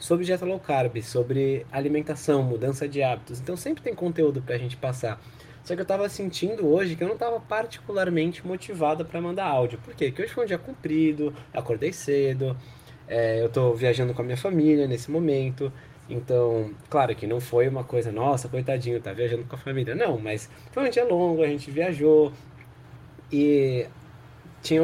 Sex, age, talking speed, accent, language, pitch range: male, 20-39, 185 wpm, Brazilian, Portuguese, 125-175 Hz